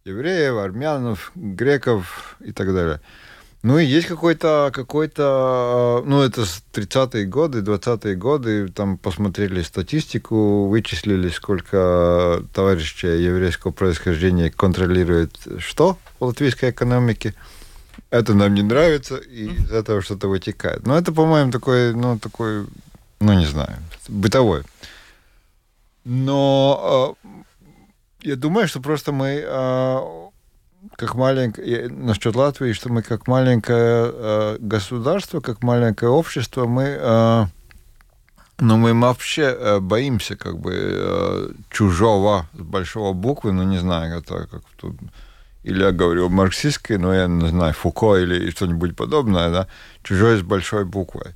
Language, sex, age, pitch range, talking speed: Russian, male, 30-49, 95-130 Hz, 125 wpm